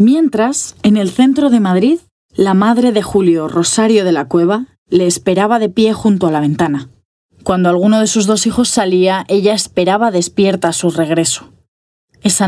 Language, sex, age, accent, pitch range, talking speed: Spanish, female, 20-39, Spanish, 170-235 Hz, 175 wpm